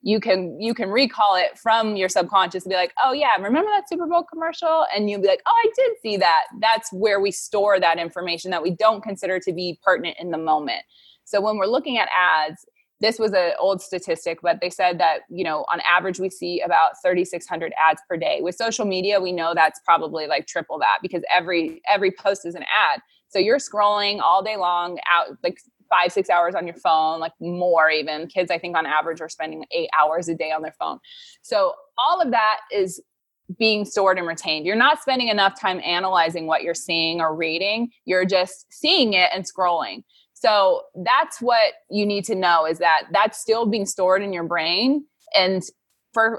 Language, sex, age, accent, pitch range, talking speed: English, female, 20-39, American, 175-225 Hz, 210 wpm